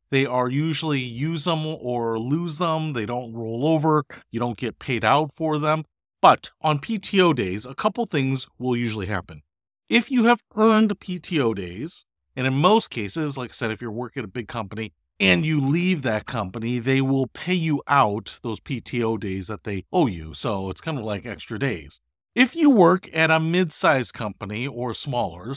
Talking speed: 190 wpm